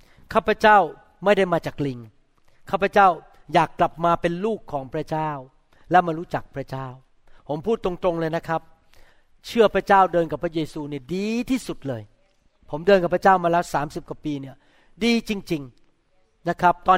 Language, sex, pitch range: Thai, male, 150-195 Hz